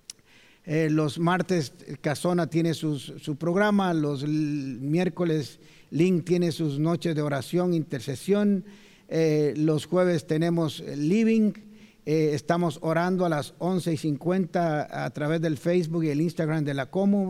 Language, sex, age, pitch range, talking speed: Spanish, male, 50-69, 155-185 Hz, 145 wpm